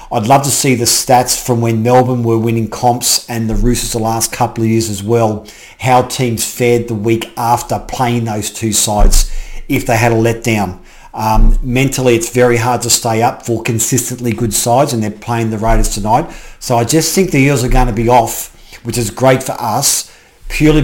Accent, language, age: Australian, English, 50-69